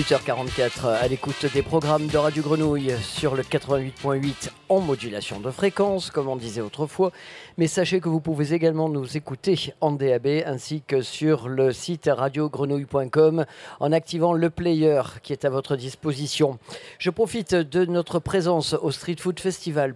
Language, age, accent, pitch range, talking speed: French, 40-59, French, 135-165 Hz, 160 wpm